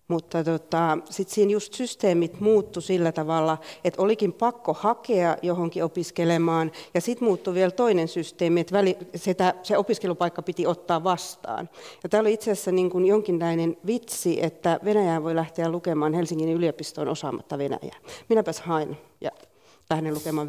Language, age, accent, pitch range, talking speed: Finnish, 40-59, native, 165-205 Hz, 145 wpm